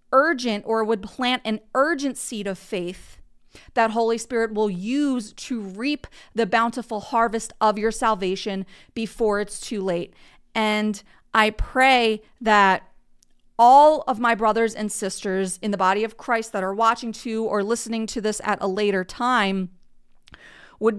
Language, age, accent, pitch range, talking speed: English, 30-49, American, 210-240 Hz, 155 wpm